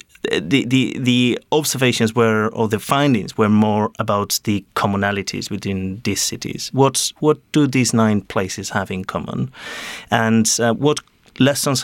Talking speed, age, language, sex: 145 wpm, 30-49, English, male